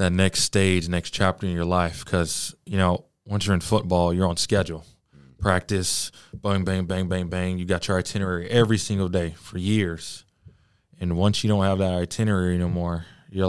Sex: male